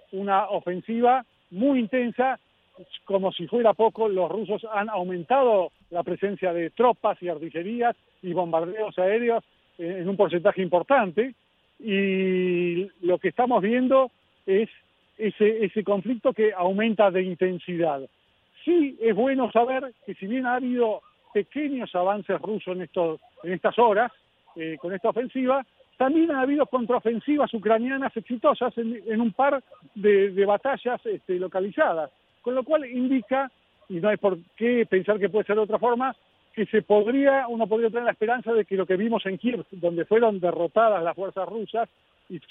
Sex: male